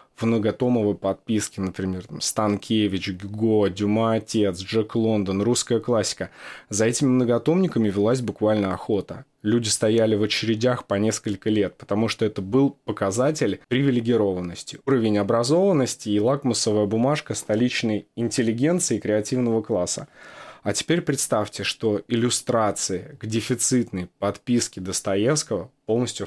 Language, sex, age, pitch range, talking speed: Russian, male, 20-39, 105-125 Hz, 110 wpm